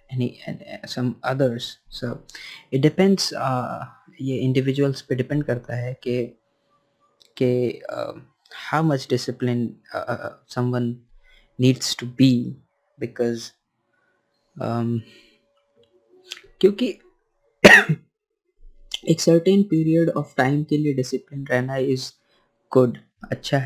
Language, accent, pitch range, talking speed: Hindi, native, 125-145 Hz, 45 wpm